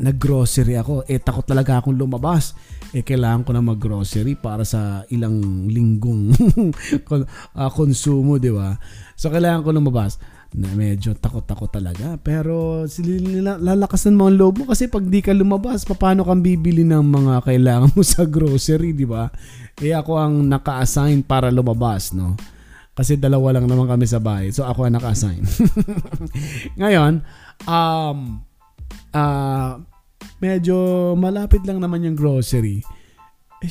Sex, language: male, Filipino